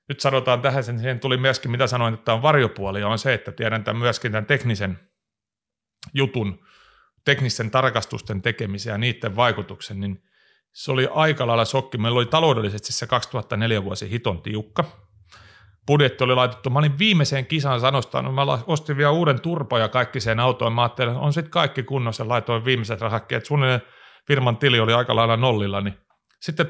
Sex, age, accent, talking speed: male, 30-49, native, 170 wpm